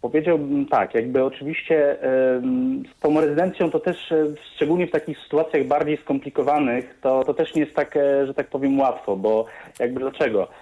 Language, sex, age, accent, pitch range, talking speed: Polish, male, 30-49, native, 125-145 Hz, 160 wpm